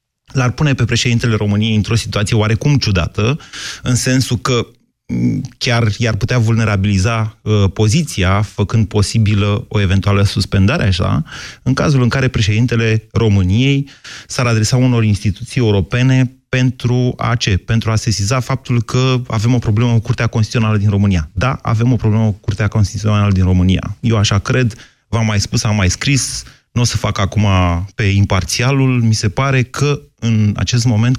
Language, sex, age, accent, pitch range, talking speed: Romanian, male, 30-49, native, 105-130 Hz, 160 wpm